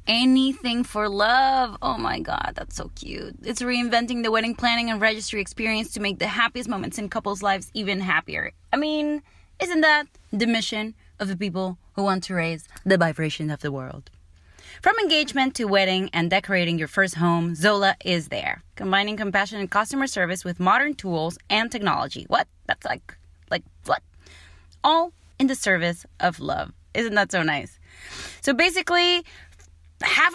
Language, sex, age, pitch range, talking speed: English, female, 20-39, 180-255 Hz, 170 wpm